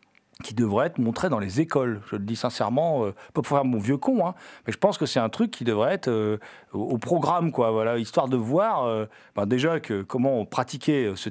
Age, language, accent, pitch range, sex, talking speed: 40-59, French, French, 110-155 Hz, male, 240 wpm